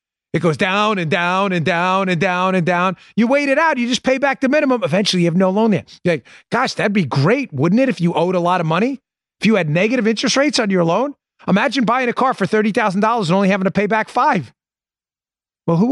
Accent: American